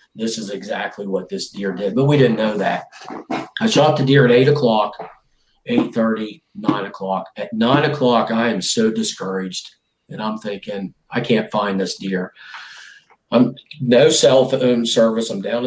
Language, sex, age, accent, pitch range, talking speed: English, male, 40-59, American, 110-140 Hz, 170 wpm